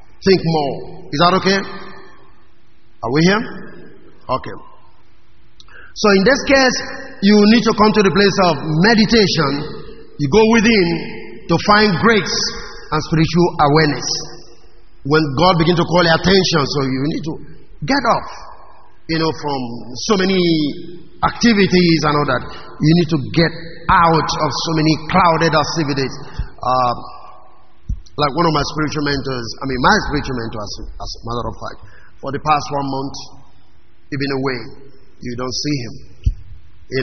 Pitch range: 130-175 Hz